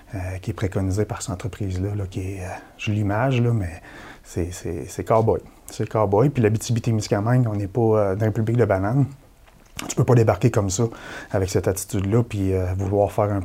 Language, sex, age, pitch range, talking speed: French, male, 30-49, 100-125 Hz, 210 wpm